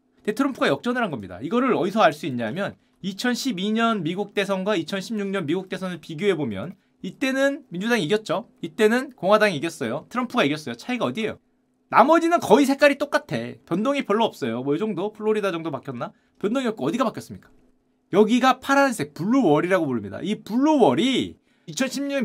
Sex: male